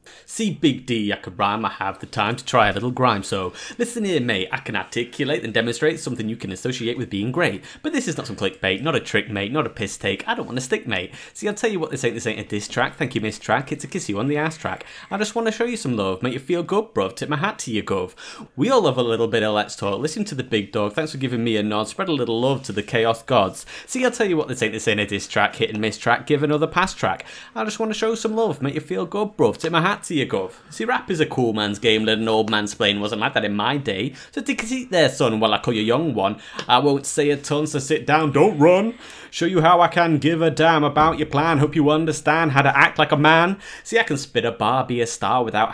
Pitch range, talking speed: 110-170 Hz, 300 wpm